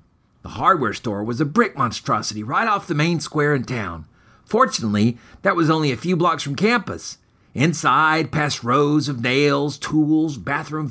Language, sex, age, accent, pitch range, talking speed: English, male, 50-69, American, 115-170 Hz, 165 wpm